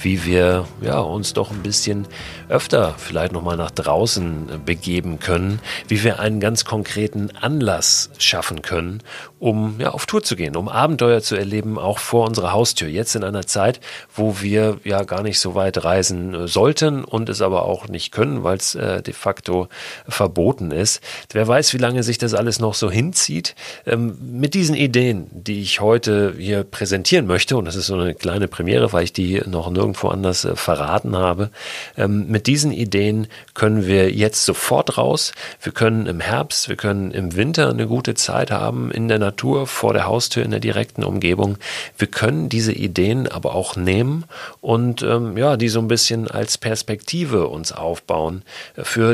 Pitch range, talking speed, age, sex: 95-115 Hz, 180 wpm, 40-59, male